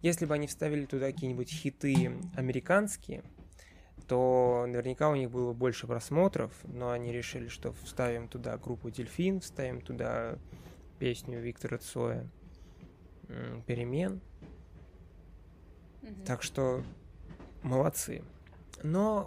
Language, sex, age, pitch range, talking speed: Russian, male, 20-39, 120-140 Hz, 105 wpm